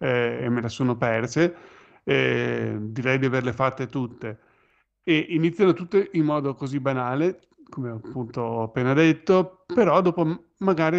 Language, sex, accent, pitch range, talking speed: Italian, male, native, 125-150 Hz, 140 wpm